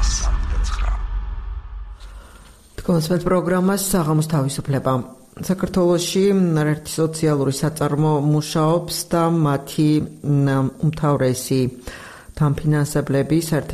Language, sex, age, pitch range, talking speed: Arabic, female, 50-69, 130-155 Hz, 65 wpm